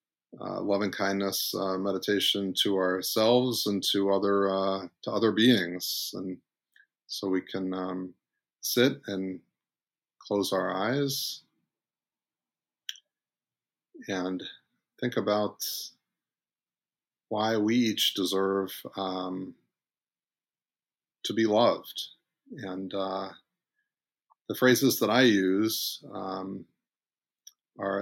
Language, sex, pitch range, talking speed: English, male, 95-105 Hz, 95 wpm